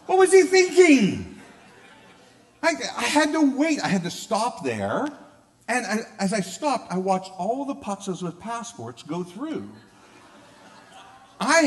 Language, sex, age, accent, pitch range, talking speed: English, male, 50-69, American, 155-245 Hz, 145 wpm